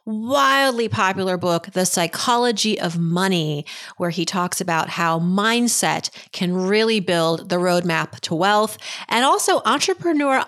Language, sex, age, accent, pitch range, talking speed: English, female, 30-49, American, 175-220 Hz, 130 wpm